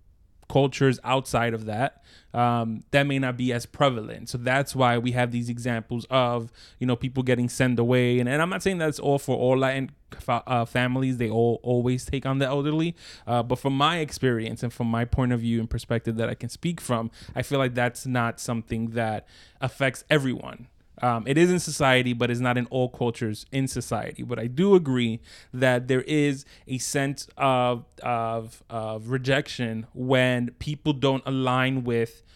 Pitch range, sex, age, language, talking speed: 120-135 Hz, male, 20-39, English, 190 wpm